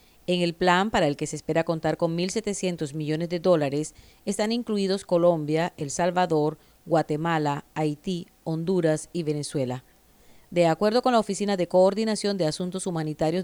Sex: female